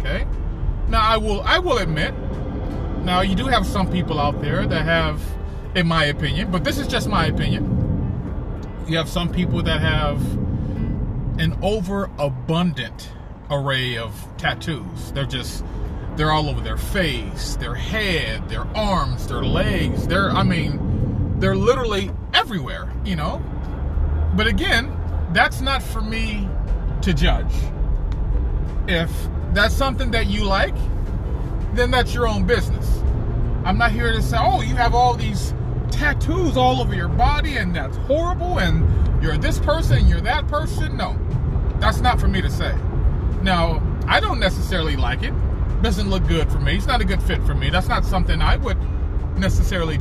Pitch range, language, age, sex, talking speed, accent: 75-110 Hz, English, 30-49, male, 160 wpm, American